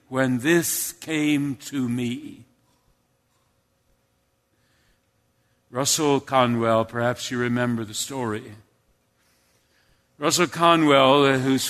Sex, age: male, 60-79